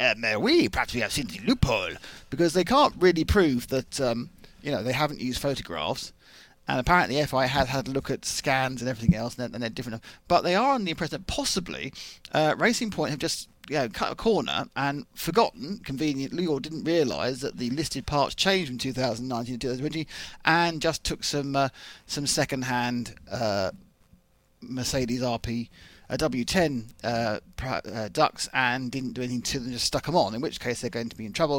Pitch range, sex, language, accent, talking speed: 125-170 Hz, male, English, British, 205 wpm